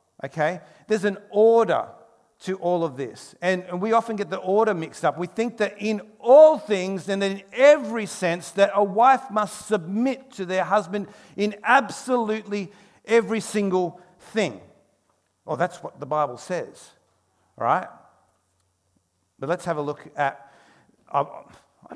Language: English